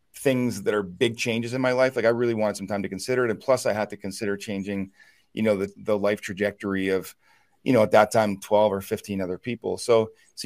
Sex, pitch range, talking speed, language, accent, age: male, 100-125 Hz, 245 wpm, English, American, 40-59